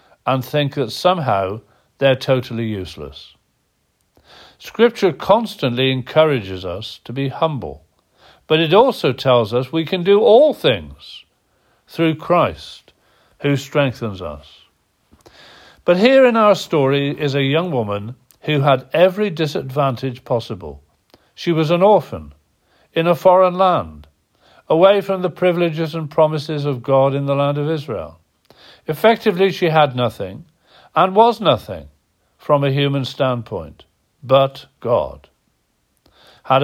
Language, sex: English, male